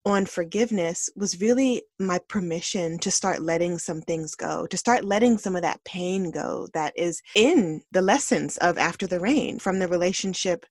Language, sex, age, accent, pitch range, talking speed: English, female, 20-39, American, 170-200 Hz, 180 wpm